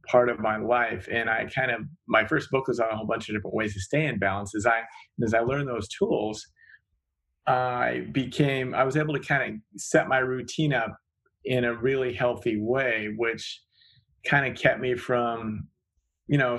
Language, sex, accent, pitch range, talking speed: English, male, American, 110-130 Hz, 200 wpm